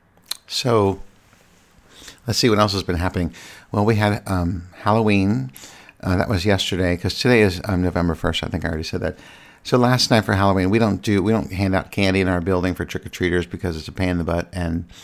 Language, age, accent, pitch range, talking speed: English, 50-69, American, 90-110 Hz, 220 wpm